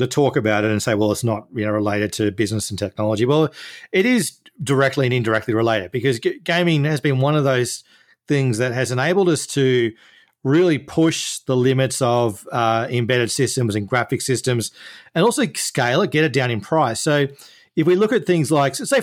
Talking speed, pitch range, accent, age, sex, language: 195 wpm, 115-145 Hz, Australian, 40-59, male, English